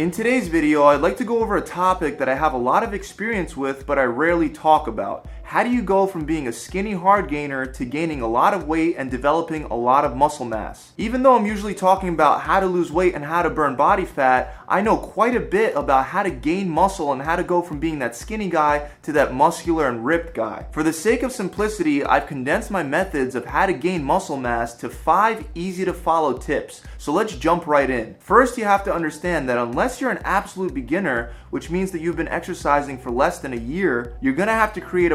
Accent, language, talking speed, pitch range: American, English, 240 wpm, 145-195 Hz